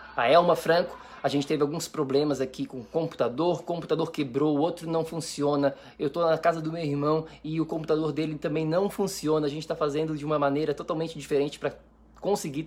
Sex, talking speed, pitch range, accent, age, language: male, 210 wpm, 135-160 Hz, Brazilian, 20-39, Portuguese